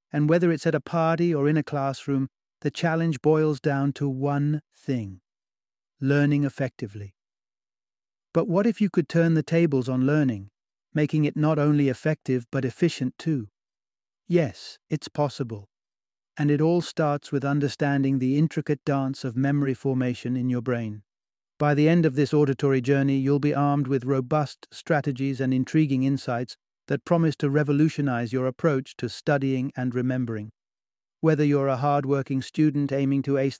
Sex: male